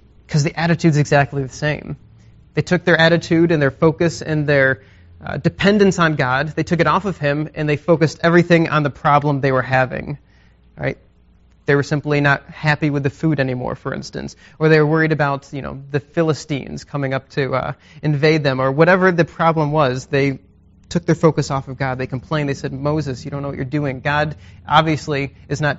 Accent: American